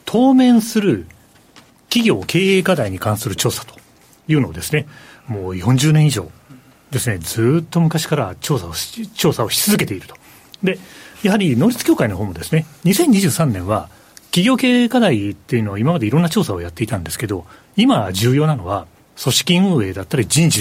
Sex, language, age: male, Japanese, 40-59